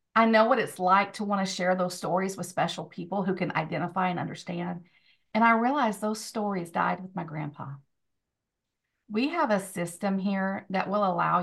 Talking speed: 190 wpm